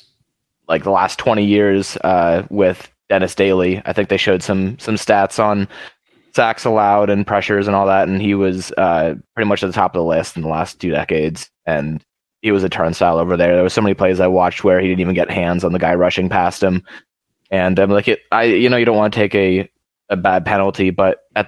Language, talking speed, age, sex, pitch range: English, 240 wpm, 20-39, male, 95-110 Hz